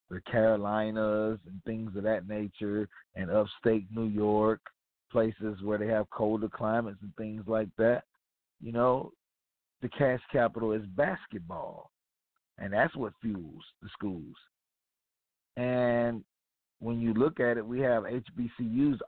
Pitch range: 105-135 Hz